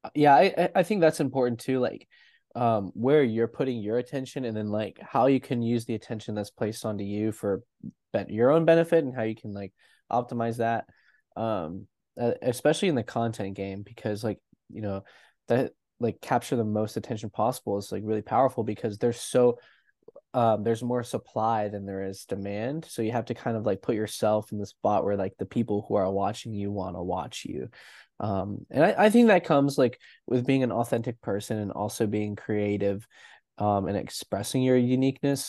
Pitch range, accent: 100-120 Hz, American